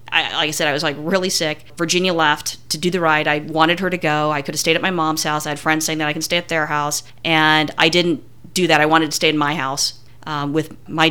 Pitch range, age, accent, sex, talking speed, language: 150-175 Hz, 30-49, American, female, 285 wpm, English